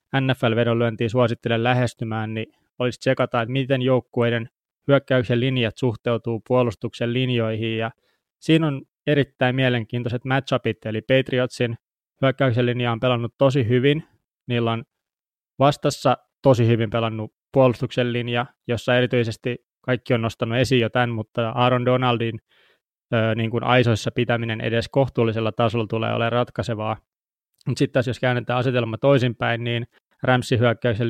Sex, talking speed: male, 125 wpm